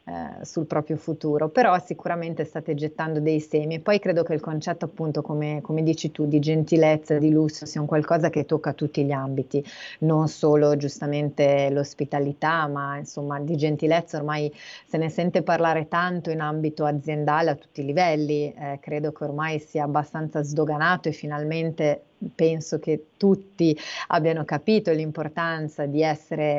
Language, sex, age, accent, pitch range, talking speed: Italian, female, 30-49, native, 150-170 Hz, 160 wpm